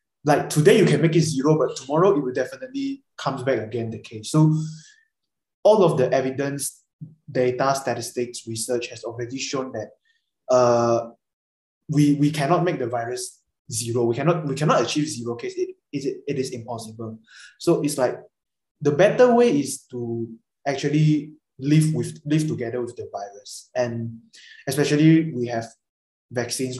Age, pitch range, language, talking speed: 20-39, 120-160 Hz, English, 160 wpm